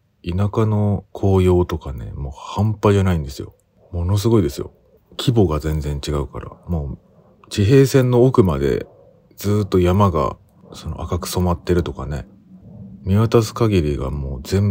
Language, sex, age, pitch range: Japanese, male, 40-59, 75-105 Hz